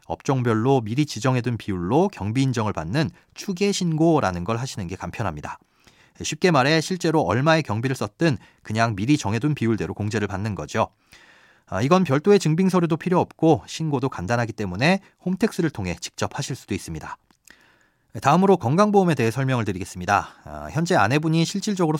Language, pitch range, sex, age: Korean, 110-165 Hz, male, 30-49